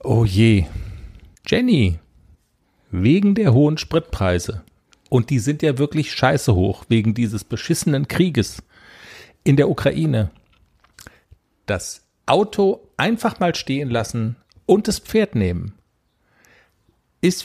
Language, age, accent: German, 50-69, German